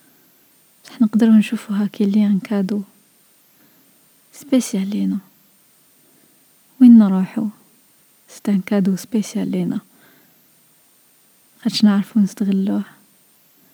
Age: 20-39